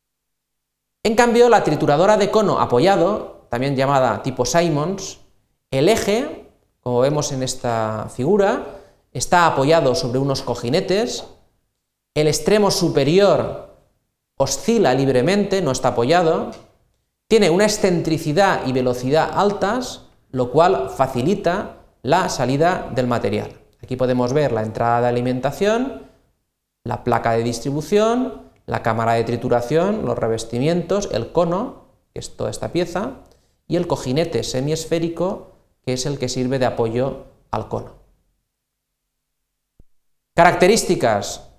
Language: Spanish